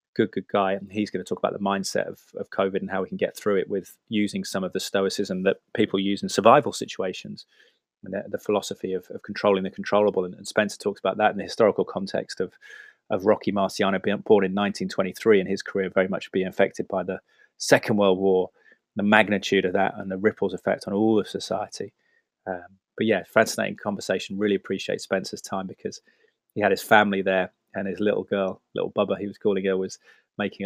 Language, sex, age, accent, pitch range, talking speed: English, male, 20-39, British, 95-100 Hz, 220 wpm